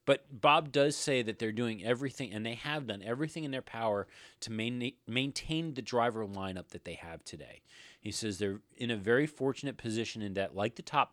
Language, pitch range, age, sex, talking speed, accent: English, 100-130 Hz, 30-49, male, 205 wpm, American